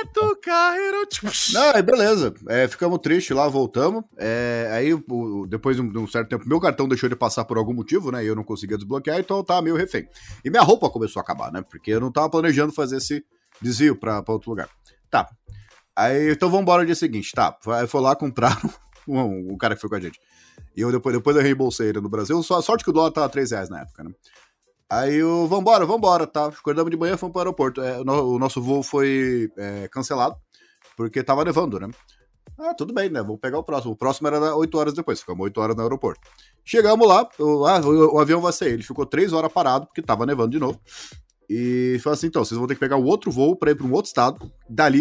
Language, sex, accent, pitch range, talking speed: Portuguese, male, Brazilian, 120-175 Hz, 235 wpm